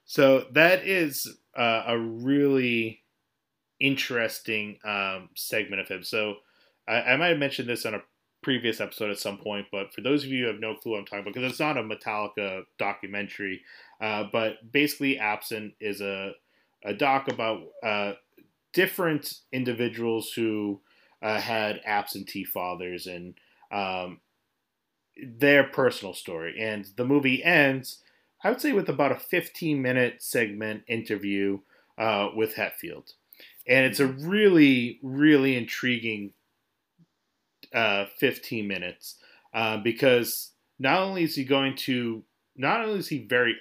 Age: 30-49